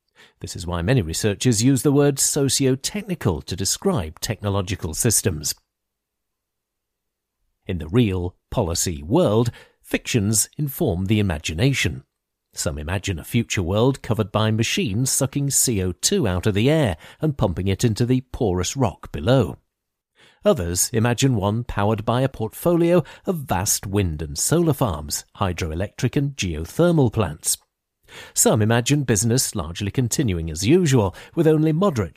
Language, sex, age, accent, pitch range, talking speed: English, male, 50-69, British, 95-140 Hz, 130 wpm